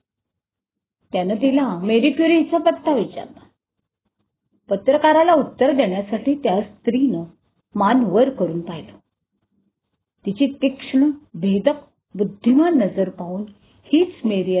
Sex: female